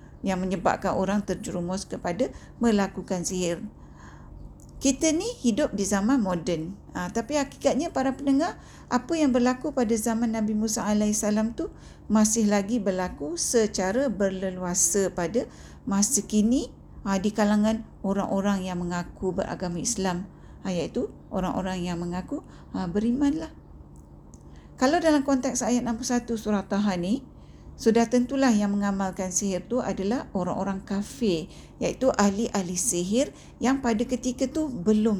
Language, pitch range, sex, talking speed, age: Malay, 190-245 Hz, female, 135 wpm, 50-69